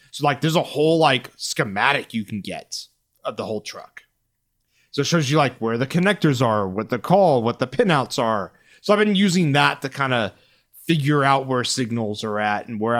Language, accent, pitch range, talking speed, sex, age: English, American, 115-150 Hz, 210 wpm, male, 30-49